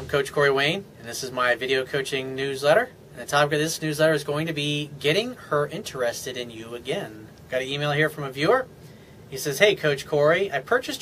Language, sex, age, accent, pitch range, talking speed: English, male, 30-49, American, 130-165 Hz, 225 wpm